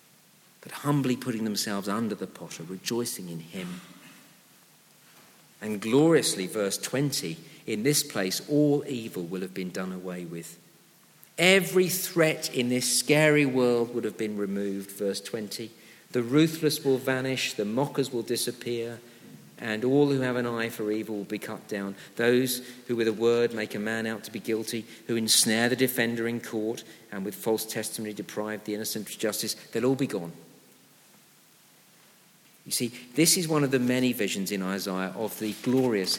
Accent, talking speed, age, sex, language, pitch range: British, 165 wpm, 50-69, male, English, 105-140 Hz